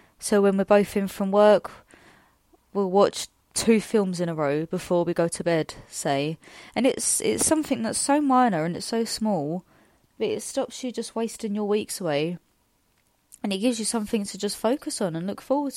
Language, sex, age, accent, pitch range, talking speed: English, female, 20-39, British, 190-230 Hz, 200 wpm